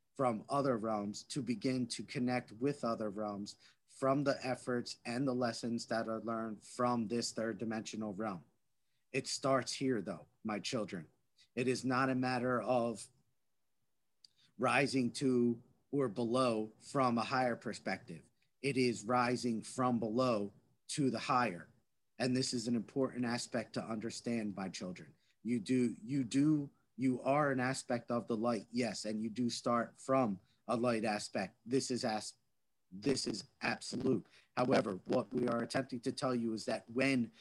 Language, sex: English, male